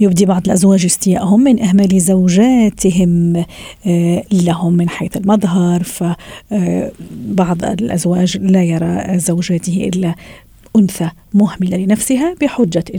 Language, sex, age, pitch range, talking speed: Arabic, female, 40-59, 180-220 Hz, 95 wpm